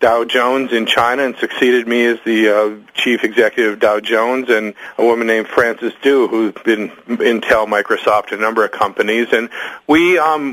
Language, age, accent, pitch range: English, 40-59, American, 110-135 Hz